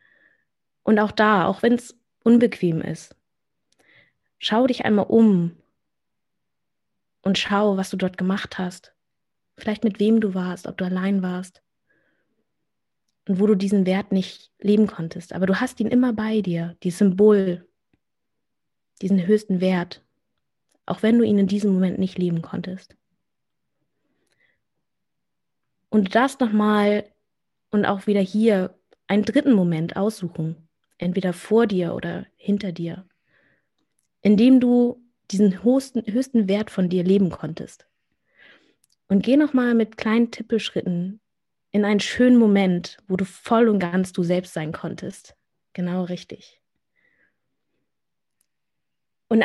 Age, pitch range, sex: 20-39, 185-220 Hz, female